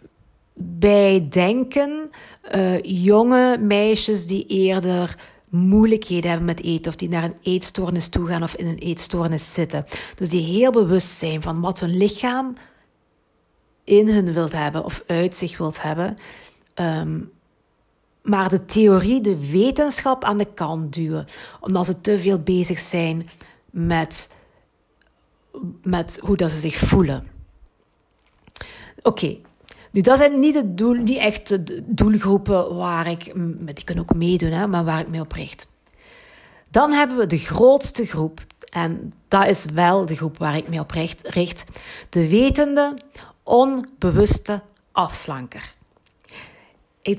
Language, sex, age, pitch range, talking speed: Dutch, female, 50-69, 170-210 Hz, 135 wpm